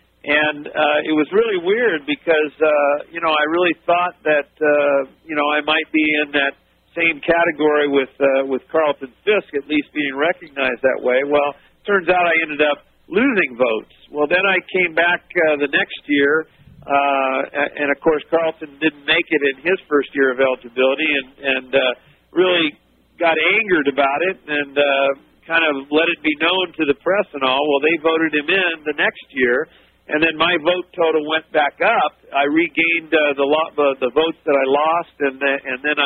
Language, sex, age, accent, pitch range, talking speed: English, male, 50-69, American, 140-165 Hz, 195 wpm